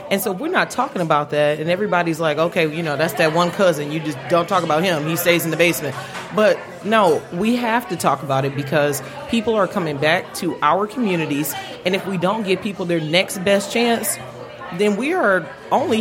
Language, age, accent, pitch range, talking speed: English, 30-49, American, 155-200 Hz, 215 wpm